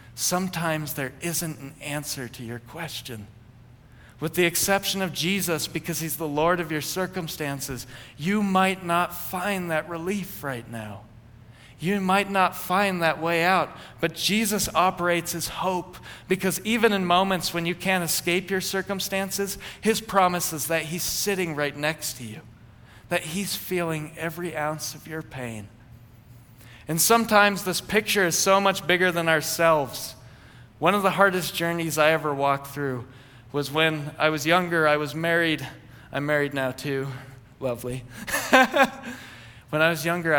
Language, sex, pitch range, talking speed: English, male, 125-175 Hz, 155 wpm